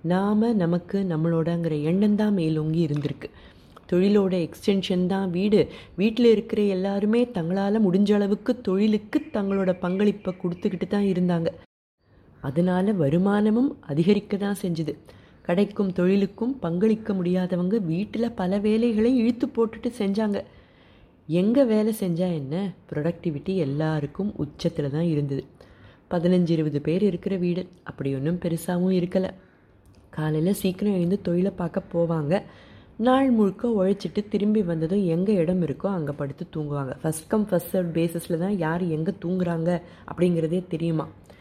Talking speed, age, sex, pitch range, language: 115 wpm, 30-49, female, 160-205 Hz, Tamil